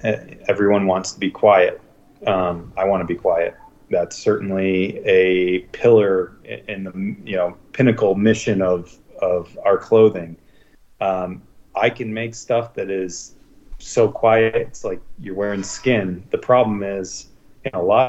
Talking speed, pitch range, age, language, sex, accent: 150 wpm, 95-115 Hz, 30-49, English, male, American